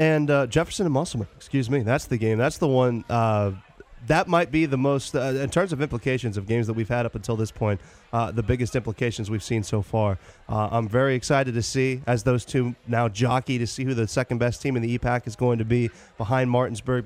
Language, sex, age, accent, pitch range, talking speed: English, male, 30-49, American, 115-140 Hz, 235 wpm